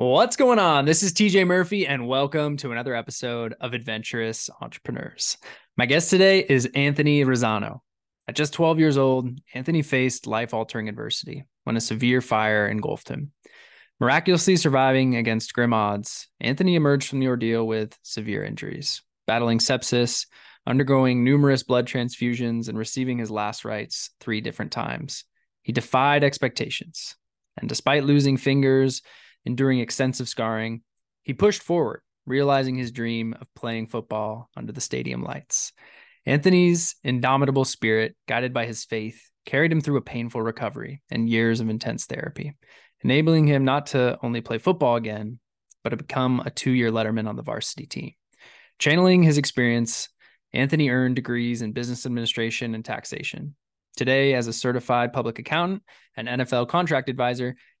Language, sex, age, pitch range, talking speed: English, male, 20-39, 115-145 Hz, 150 wpm